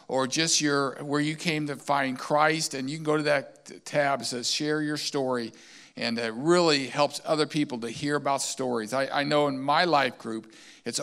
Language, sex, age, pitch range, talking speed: English, male, 50-69, 130-155 Hz, 210 wpm